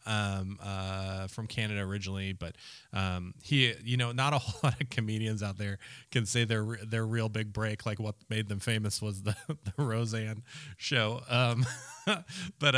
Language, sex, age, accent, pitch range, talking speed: English, male, 20-39, American, 100-115 Hz, 175 wpm